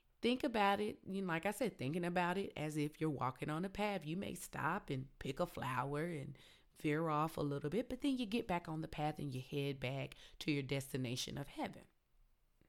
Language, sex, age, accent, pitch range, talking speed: English, female, 30-49, American, 140-175 Hz, 225 wpm